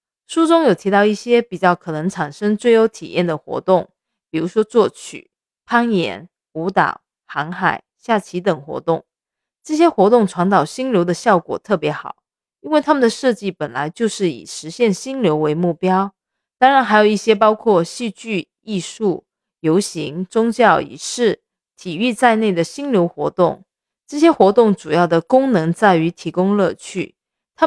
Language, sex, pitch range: Chinese, female, 175-235 Hz